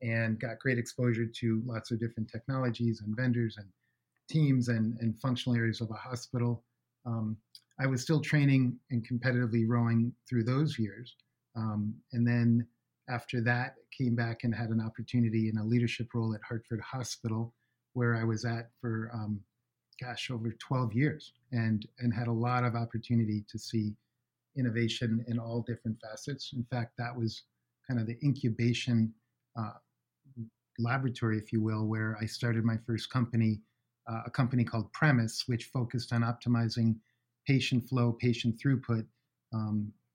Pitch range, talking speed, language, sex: 115-125 Hz, 155 wpm, English, male